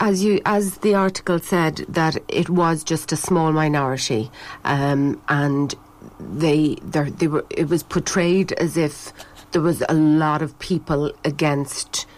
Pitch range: 140-165 Hz